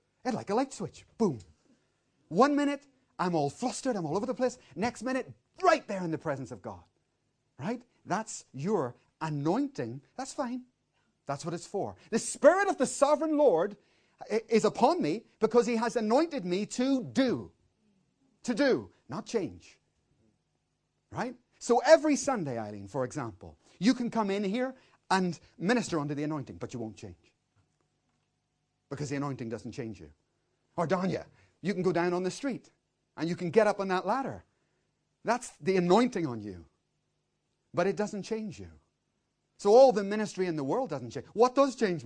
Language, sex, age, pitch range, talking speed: English, male, 40-59, 155-255 Hz, 175 wpm